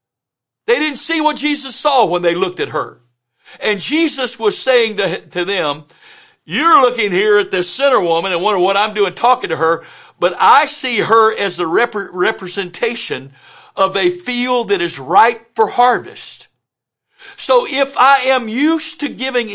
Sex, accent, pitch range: male, American, 180-250 Hz